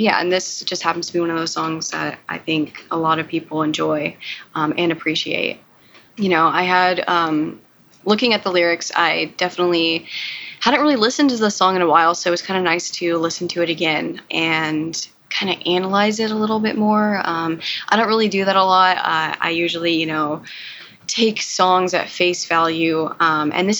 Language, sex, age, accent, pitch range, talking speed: English, female, 20-39, American, 165-195 Hz, 210 wpm